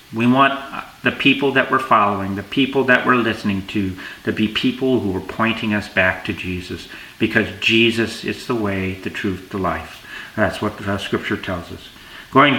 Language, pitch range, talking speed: English, 105-140 Hz, 185 wpm